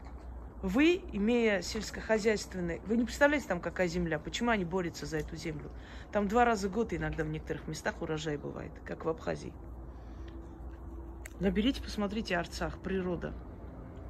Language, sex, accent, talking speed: Russian, female, native, 140 wpm